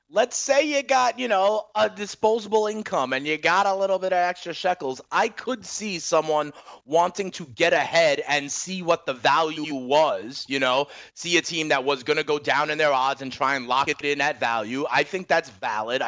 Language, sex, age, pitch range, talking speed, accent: English, male, 30-49, 140-175 Hz, 215 wpm, American